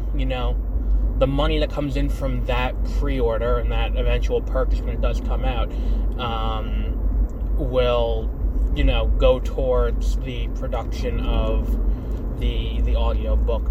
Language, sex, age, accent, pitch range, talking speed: English, male, 20-39, American, 75-120 Hz, 135 wpm